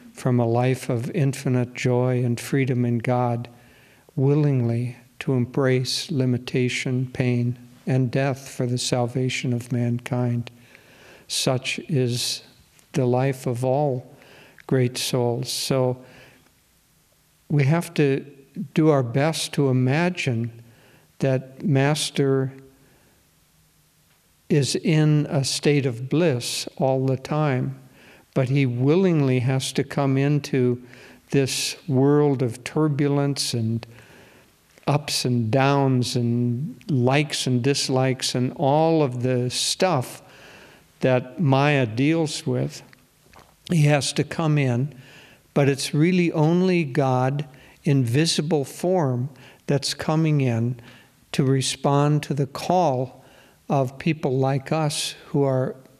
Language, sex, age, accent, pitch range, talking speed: English, male, 60-79, American, 125-145 Hz, 115 wpm